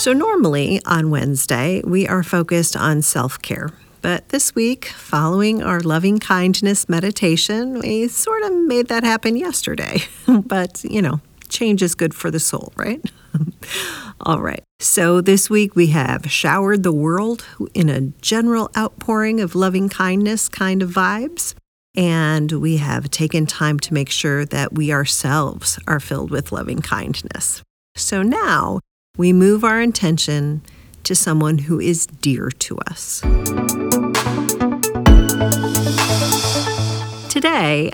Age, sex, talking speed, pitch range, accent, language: 40-59, female, 135 wpm, 155-220 Hz, American, English